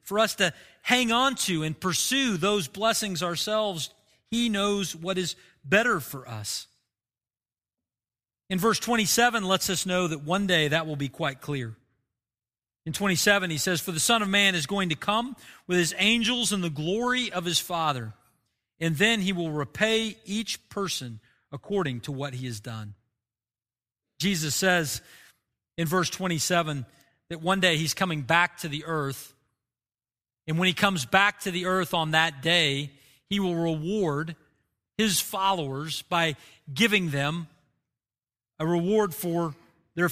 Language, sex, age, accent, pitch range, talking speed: English, male, 40-59, American, 145-205 Hz, 155 wpm